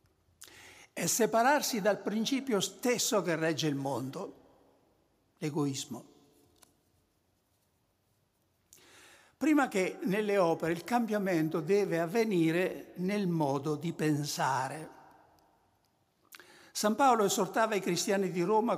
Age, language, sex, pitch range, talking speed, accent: 60-79, Italian, male, 150-210 Hz, 95 wpm, native